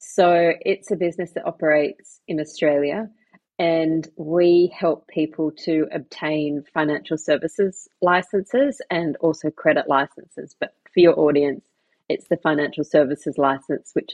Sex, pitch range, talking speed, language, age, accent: female, 150-180 Hz, 130 wpm, English, 30-49, Australian